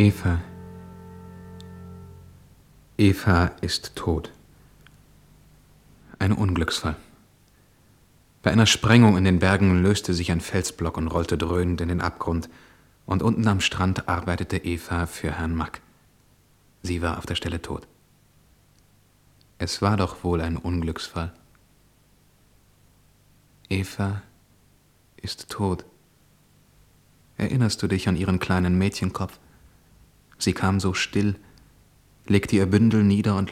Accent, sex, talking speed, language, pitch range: German, male, 110 wpm, German, 85-105 Hz